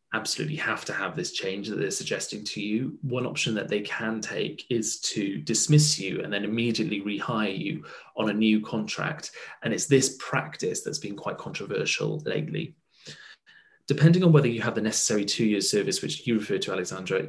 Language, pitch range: English, 105-145 Hz